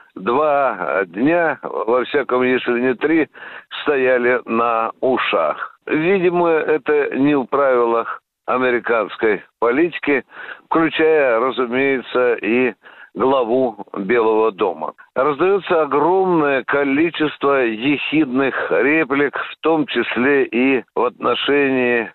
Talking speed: 90 wpm